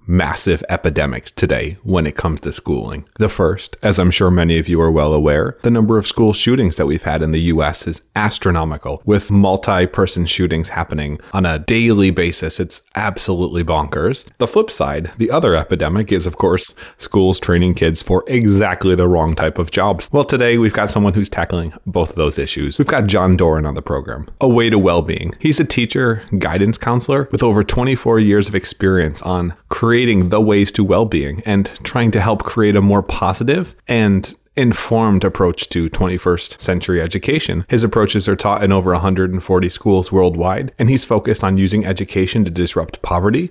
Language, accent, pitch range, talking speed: English, American, 90-115 Hz, 185 wpm